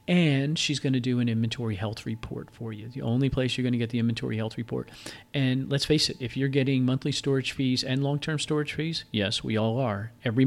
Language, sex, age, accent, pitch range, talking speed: English, male, 40-59, American, 110-135 Hz, 235 wpm